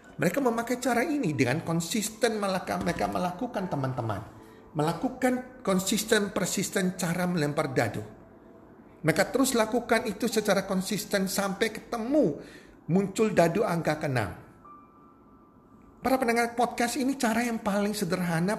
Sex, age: male, 50-69